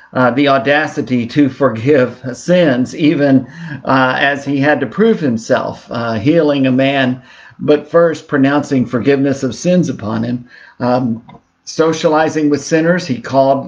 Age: 50-69